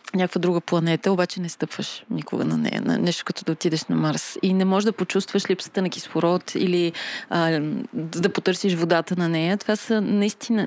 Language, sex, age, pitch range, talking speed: Bulgarian, female, 30-49, 175-205 Hz, 190 wpm